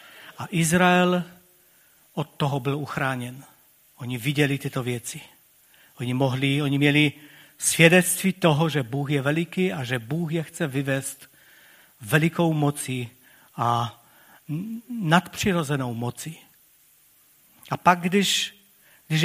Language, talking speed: Czech, 105 wpm